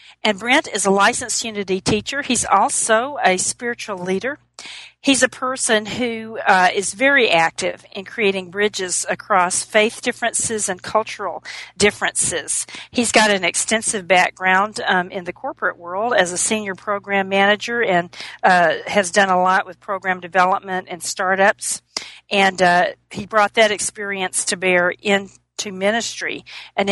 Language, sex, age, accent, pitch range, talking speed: English, female, 40-59, American, 185-220 Hz, 145 wpm